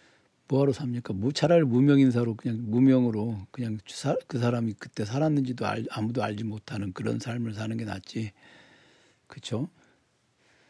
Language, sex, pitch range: Korean, male, 105-130 Hz